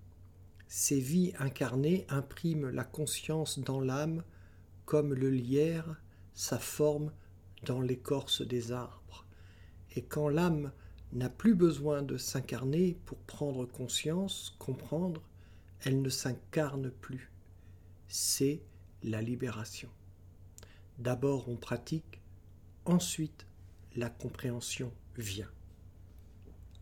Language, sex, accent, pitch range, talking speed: French, male, French, 90-145 Hz, 95 wpm